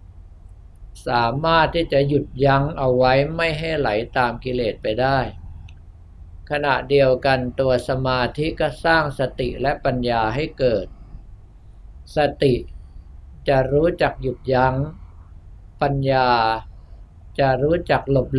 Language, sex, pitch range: Thai, male, 100-140 Hz